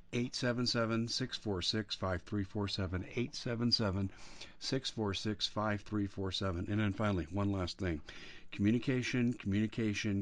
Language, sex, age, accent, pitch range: English, male, 50-69, American, 90-115 Hz